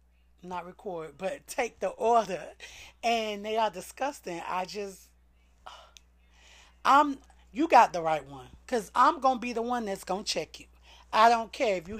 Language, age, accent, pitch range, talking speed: English, 30-49, American, 150-240 Hz, 165 wpm